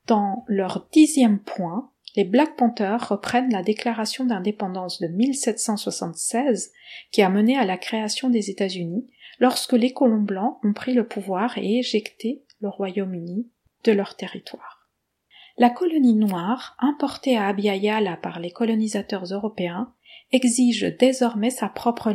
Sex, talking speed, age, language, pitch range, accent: female, 135 wpm, 40-59, French, 205-245 Hz, French